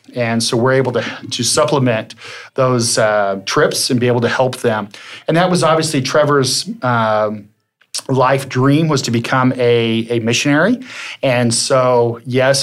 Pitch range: 115-130 Hz